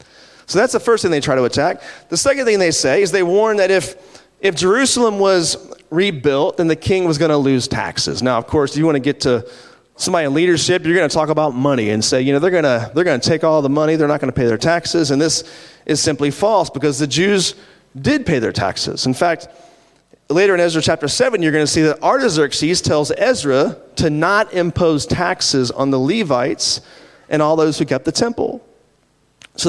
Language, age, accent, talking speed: English, 30-49, American, 220 wpm